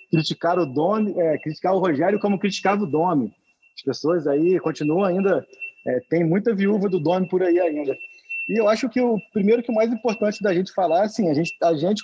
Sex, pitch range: male, 165-210 Hz